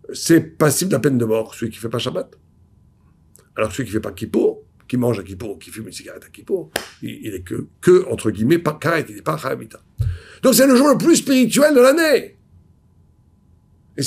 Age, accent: 60-79, French